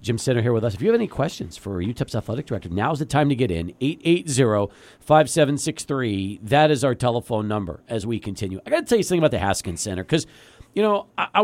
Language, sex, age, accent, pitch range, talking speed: English, male, 40-59, American, 120-195 Hz, 235 wpm